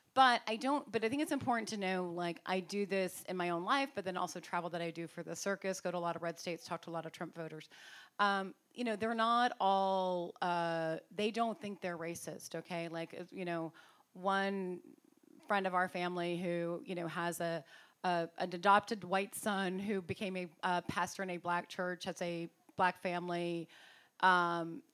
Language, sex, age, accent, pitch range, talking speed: English, female, 30-49, American, 170-200 Hz, 210 wpm